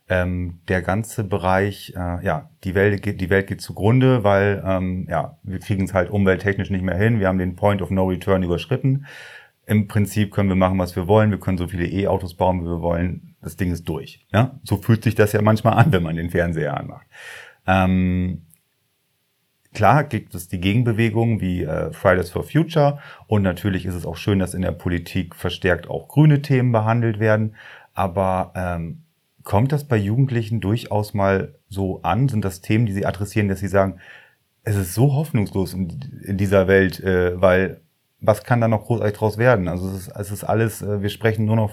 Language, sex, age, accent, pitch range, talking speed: German, male, 30-49, German, 95-115 Hz, 200 wpm